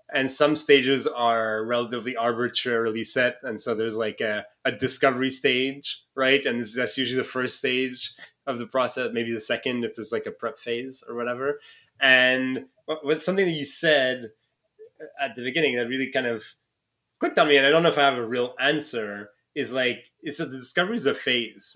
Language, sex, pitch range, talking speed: English, male, 125-150 Hz, 195 wpm